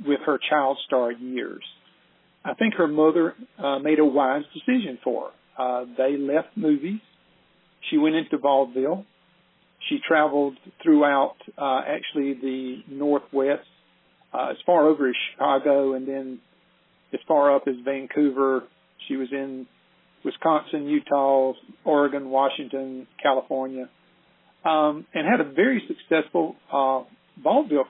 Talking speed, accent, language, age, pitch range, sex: 130 wpm, American, English, 50-69, 135-170 Hz, male